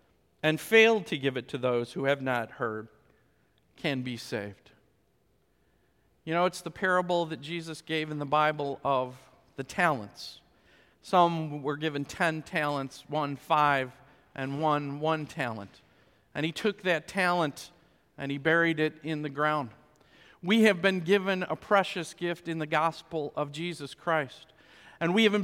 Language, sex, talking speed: English, male, 160 wpm